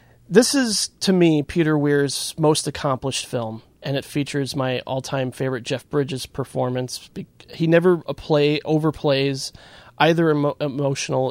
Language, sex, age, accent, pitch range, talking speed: English, male, 30-49, American, 125-150 Hz, 140 wpm